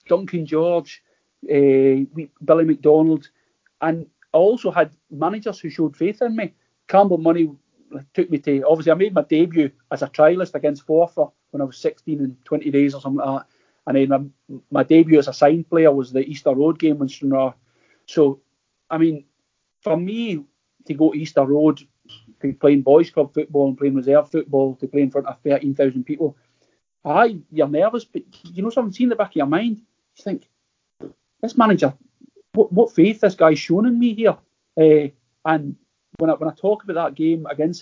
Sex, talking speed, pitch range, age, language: male, 185 wpm, 145-180 Hz, 40-59, English